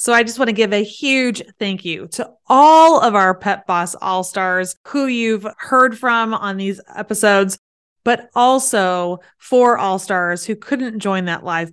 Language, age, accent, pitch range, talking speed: English, 20-39, American, 190-235 Hz, 170 wpm